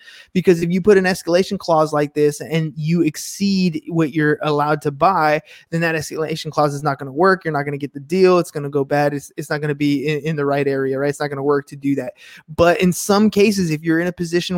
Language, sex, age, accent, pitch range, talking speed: English, male, 20-39, American, 150-195 Hz, 275 wpm